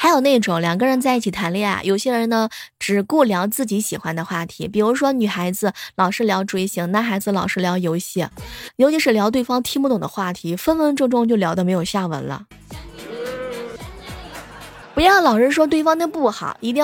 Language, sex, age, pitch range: Chinese, female, 20-39, 180-265 Hz